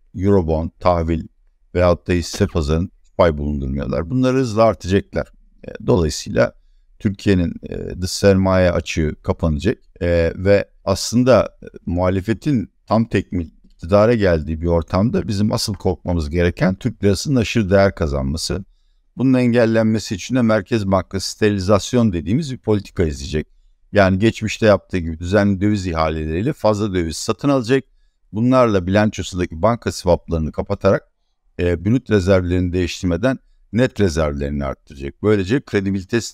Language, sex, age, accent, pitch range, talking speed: Turkish, male, 60-79, native, 85-110 Hz, 125 wpm